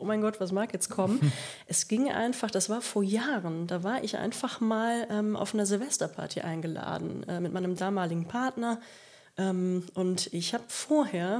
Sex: female